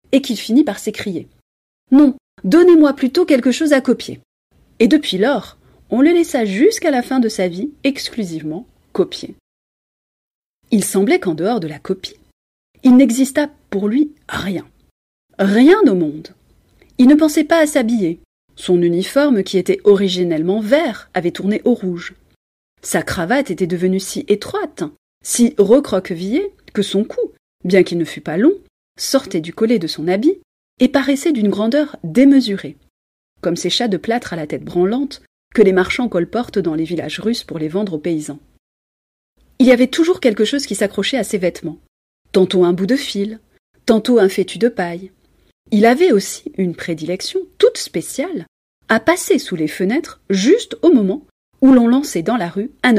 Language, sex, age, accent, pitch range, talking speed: French, female, 30-49, French, 185-275 Hz, 170 wpm